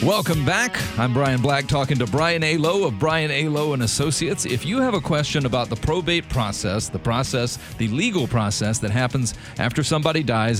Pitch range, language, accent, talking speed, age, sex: 110-150 Hz, English, American, 195 wpm, 40-59, male